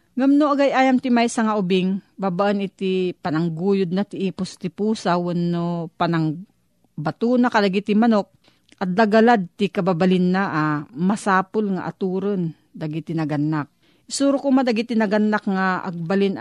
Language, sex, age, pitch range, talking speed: Filipino, female, 40-59, 180-225 Hz, 145 wpm